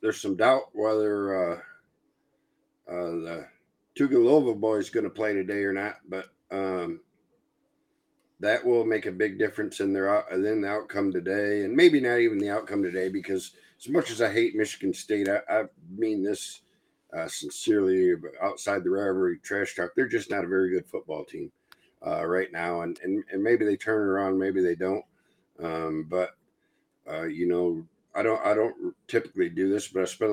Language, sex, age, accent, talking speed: English, male, 50-69, American, 185 wpm